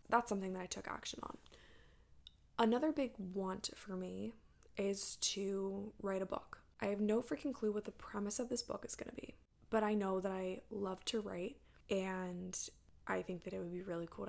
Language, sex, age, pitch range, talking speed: English, female, 20-39, 190-220 Hz, 205 wpm